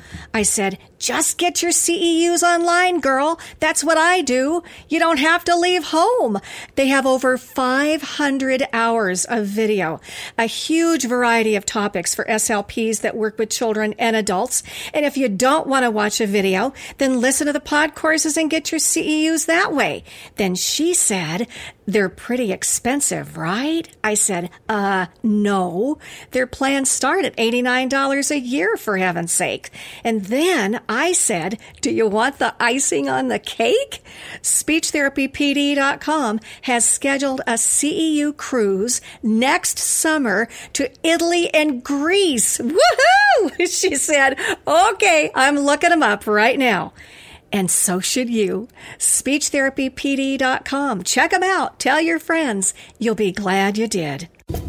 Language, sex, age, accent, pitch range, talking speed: English, female, 50-69, American, 220-315 Hz, 145 wpm